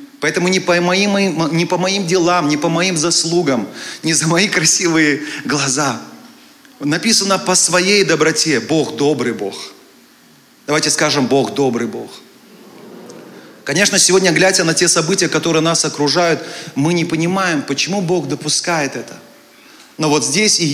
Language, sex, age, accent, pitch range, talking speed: Russian, male, 30-49, native, 145-180 Hz, 135 wpm